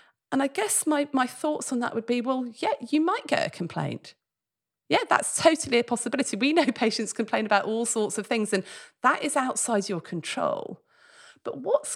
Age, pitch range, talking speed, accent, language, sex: 40-59, 195-270 Hz, 195 wpm, British, English, female